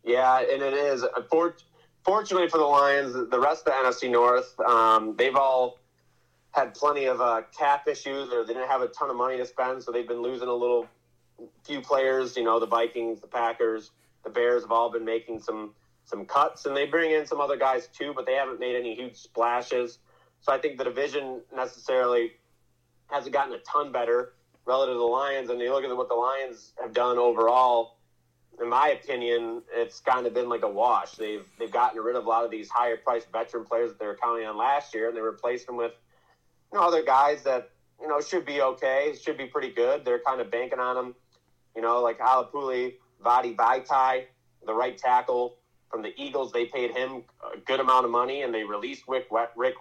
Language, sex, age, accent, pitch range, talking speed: English, male, 30-49, American, 115-135 Hz, 210 wpm